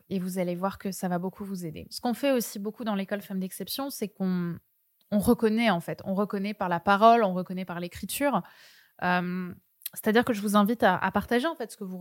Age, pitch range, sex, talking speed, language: 20-39, 185-220 Hz, female, 240 wpm, French